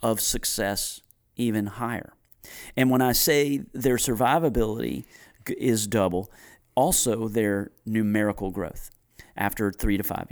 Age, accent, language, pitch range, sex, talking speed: 40-59, American, English, 95-115 Hz, male, 115 wpm